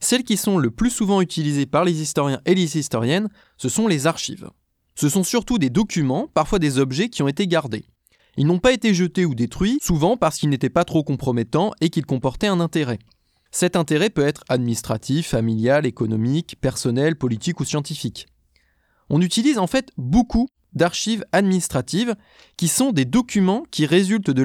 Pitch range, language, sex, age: 135-195 Hz, French, male, 20-39